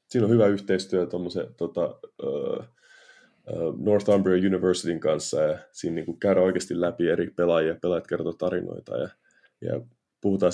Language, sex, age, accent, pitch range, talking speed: Finnish, male, 30-49, native, 90-115 Hz, 125 wpm